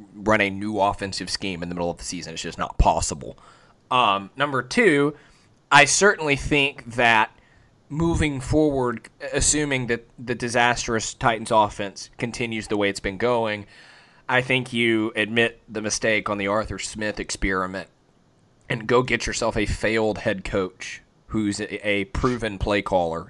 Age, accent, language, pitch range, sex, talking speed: 20-39, American, English, 105-135 Hz, male, 155 wpm